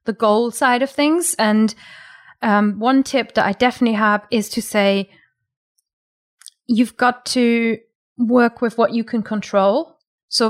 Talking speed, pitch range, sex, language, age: 150 wpm, 205-245 Hz, female, English, 30-49